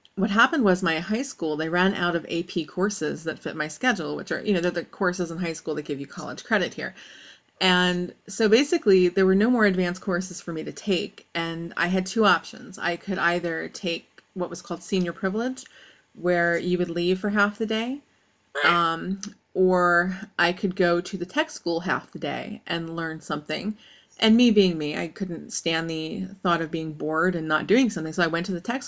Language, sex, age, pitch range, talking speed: English, female, 30-49, 170-210 Hz, 215 wpm